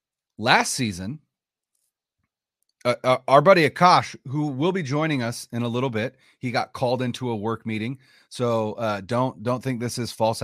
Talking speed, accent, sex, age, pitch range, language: 170 wpm, American, male, 30-49, 110-145 Hz, English